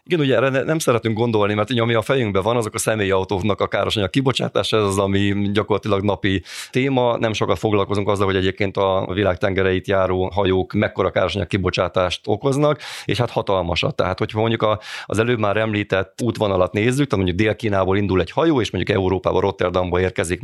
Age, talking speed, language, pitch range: 30-49, 180 wpm, Hungarian, 95-115 Hz